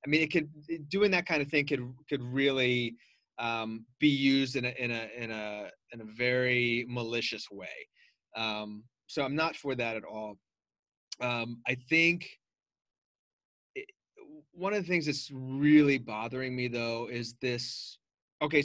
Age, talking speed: 30-49, 160 wpm